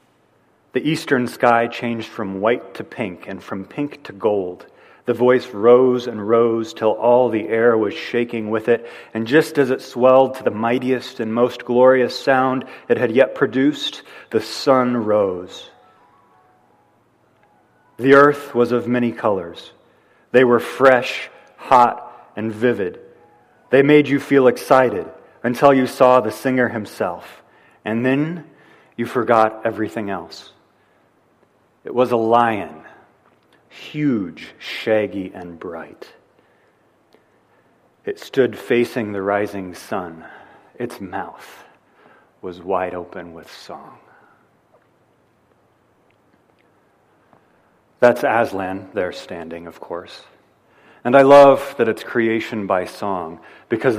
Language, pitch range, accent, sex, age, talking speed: English, 110-130 Hz, American, male, 40-59, 120 wpm